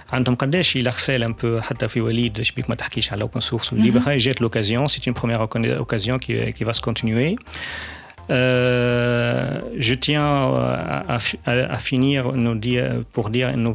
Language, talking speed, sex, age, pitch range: Arabic, 125 wpm, male, 40-59, 110-125 Hz